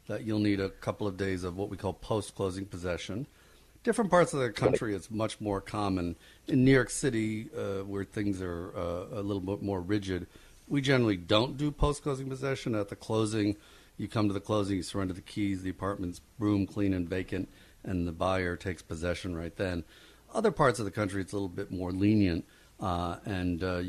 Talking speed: 220 wpm